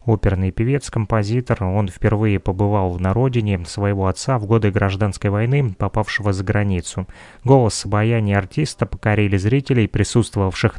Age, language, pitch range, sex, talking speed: 20-39, Russian, 100-120 Hz, male, 120 wpm